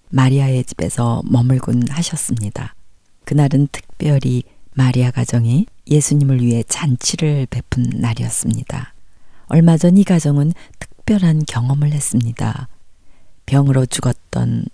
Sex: female